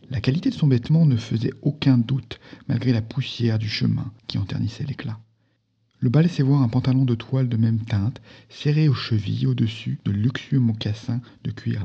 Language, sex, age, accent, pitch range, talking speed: French, male, 50-69, French, 110-135 Hz, 185 wpm